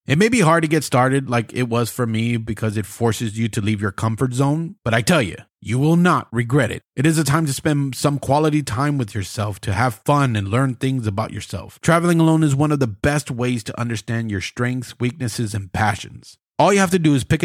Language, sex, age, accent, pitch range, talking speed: English, male, 30-49, American, 110-150 Hz, 245 wpm